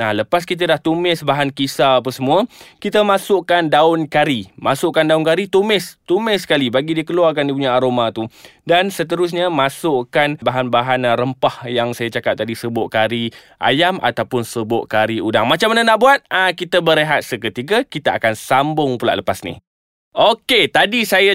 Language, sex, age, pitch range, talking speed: Malay, male, 20-39, 120-165 Hz, 170 wpm